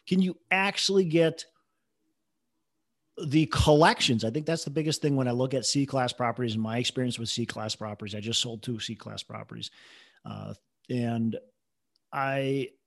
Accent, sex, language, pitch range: American, male, English, 125-155 Hz